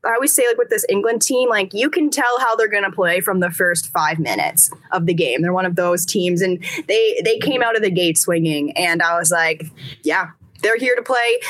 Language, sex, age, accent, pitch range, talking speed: English, female, 10-29, American, 180-255 Hz, 250 wpm